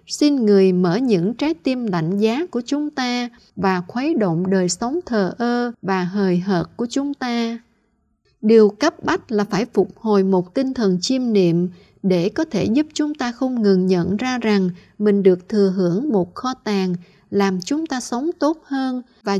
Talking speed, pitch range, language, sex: 190 wpm, 195-270 Hz, Vietnamese, female